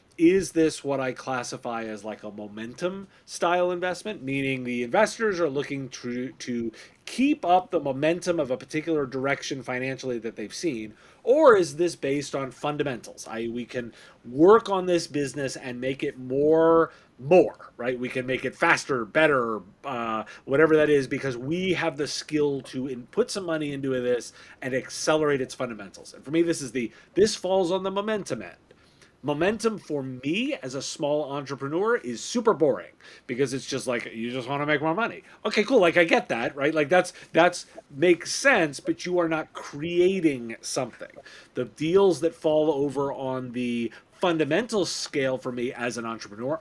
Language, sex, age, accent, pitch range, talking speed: English, male, 30-49, American, 130-175 Hz, 180 wpm